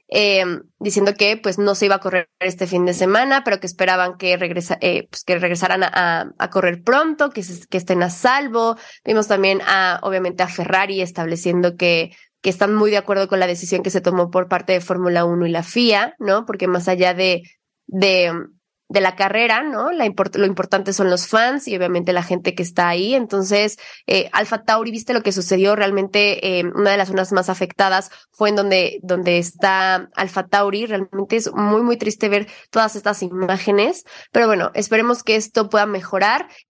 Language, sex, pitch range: Spanish, female, 185-225 Hz